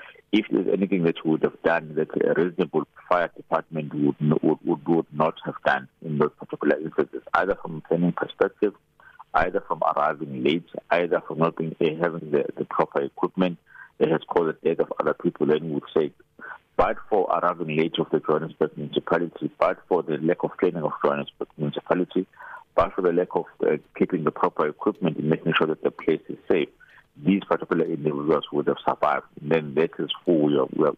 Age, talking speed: 50-69, 200 wpm